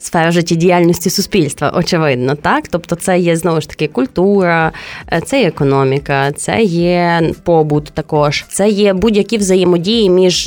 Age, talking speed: 20-39, 140 wpm